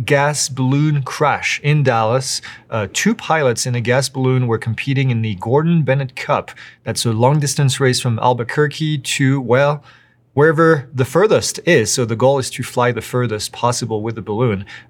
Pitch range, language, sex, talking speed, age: 115-140 Hz, English, male, 175 wpm, 30-49